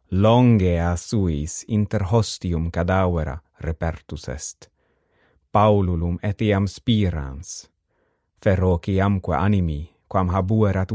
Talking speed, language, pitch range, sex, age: 75 wpm, English, 85-110 Hz, male, 30-49